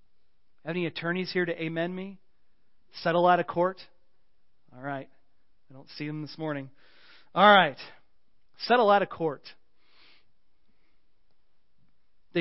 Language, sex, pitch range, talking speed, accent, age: English, male, 165-235 Hz, 120 wpm, American, 40-59